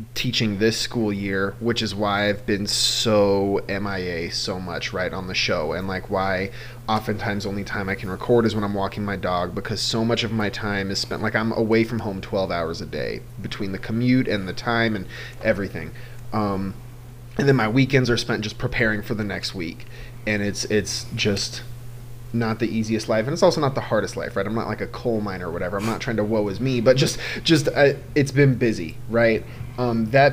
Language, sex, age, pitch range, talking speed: English, male, 30-49, 100-120 Hz, 220 wpm